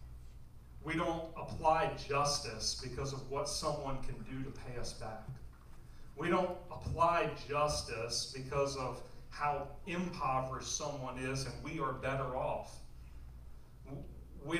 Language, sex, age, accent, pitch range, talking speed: English, male, 40-59, American, 120-155 Hz, 125 wpm